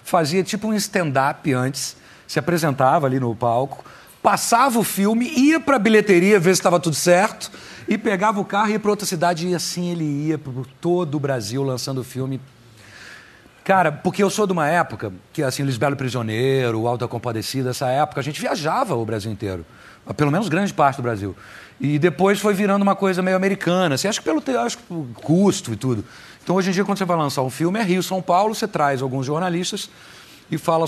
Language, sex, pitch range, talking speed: Portuguese, male, 135-195 Hz, 210 wpm